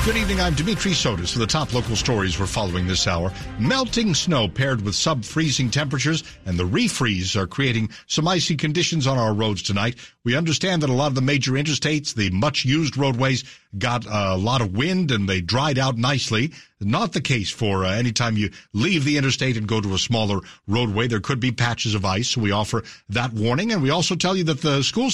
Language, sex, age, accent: English, male, 60-79, American